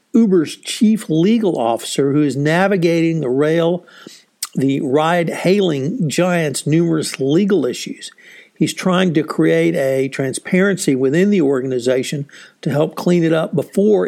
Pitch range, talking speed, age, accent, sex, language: 140-180 Hz, 130 wpm, 60-79, American, male, English